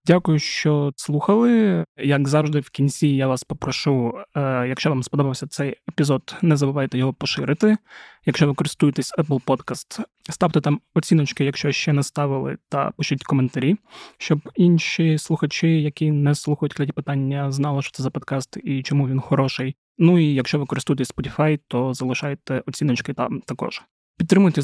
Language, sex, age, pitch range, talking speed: Ukrainian, male, 20-39, 135-150 Hz, 155 wpm